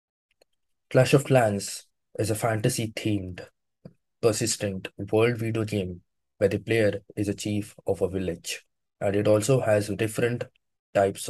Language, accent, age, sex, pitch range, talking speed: Hindi, native, 20-39, male, 95-110 Hz, 140 wpm